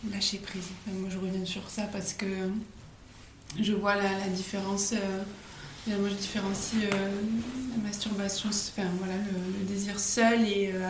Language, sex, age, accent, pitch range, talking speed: French, female, 20-39, French, 195-225 Hz, 150 wpm